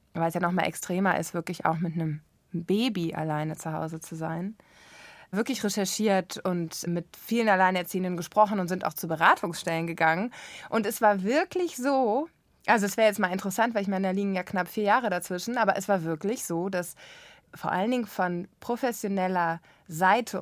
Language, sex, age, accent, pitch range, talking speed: German, female, 20-39, German, 175-215 Hz, 185 wpm